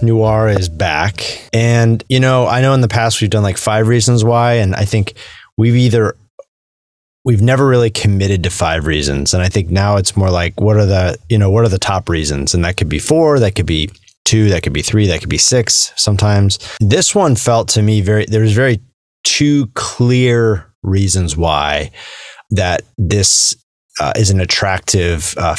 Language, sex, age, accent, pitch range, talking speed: English, male, 30-49, American, 95-115 Hz, 195 wpm